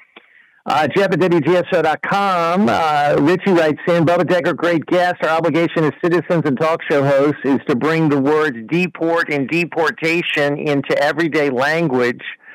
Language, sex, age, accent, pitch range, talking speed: English, male, 50-69, American, 140-170 Hz, 150 wpm